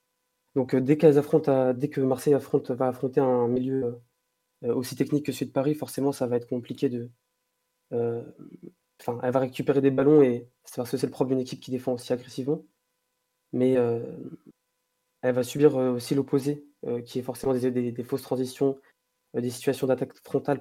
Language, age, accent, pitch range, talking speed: French, 20-39, French, 125-145 Hz, 200 wpm